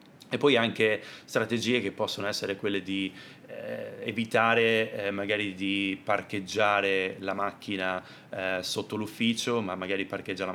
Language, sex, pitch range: Italian, male, 95-110 Hz